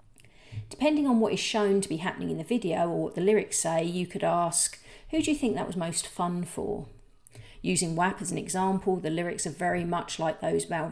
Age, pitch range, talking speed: 40-59, 155-205 Hz, 225 wpm